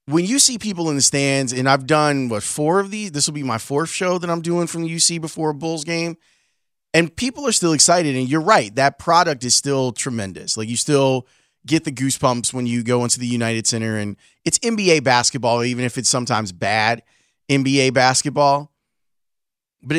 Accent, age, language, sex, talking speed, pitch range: American, 30-49, English, male, 205 wpm, 125-165 Hz